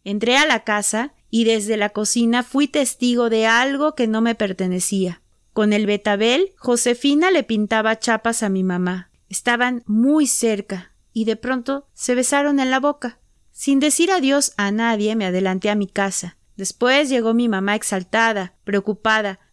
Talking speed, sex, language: 165 wpm, female, Spanish